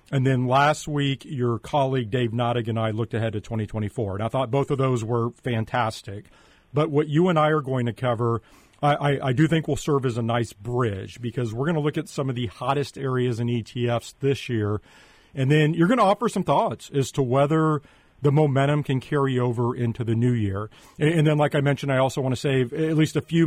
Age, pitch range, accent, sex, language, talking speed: 40-59, 115-150 Hz, American, male, English, 235 wpm